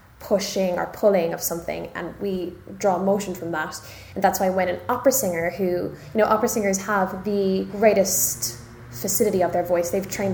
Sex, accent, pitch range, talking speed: female, Irish, 170-210 Hz, 185 wpm